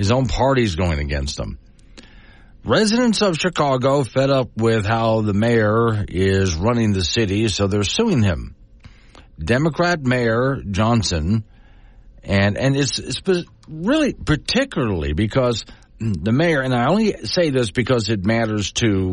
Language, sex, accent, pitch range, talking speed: English, male, American, 100-125 Hz, 140 wpm